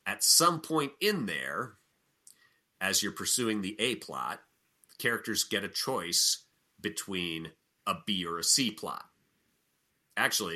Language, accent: English, American